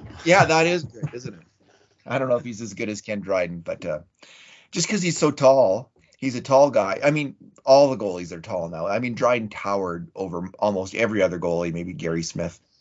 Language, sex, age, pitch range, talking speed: English, male, 30-49, 90-130 Hz, 220 wpm